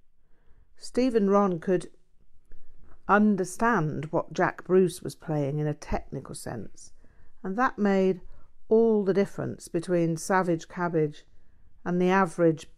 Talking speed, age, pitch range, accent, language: 115 wpm, 50-69, 155-195 Hz, British, English